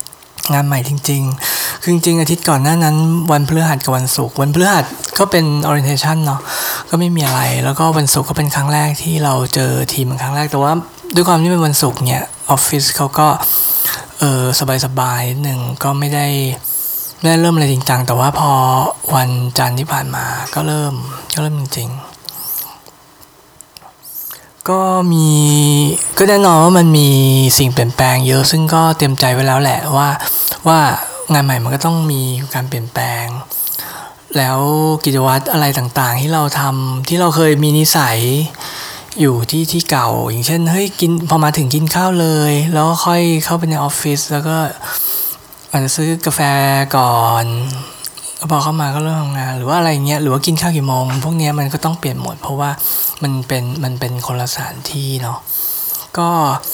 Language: Thai